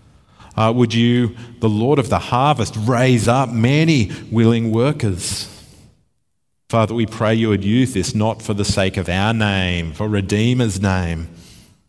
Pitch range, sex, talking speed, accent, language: 95-120 Hz, male, 150 wpm, Australian, English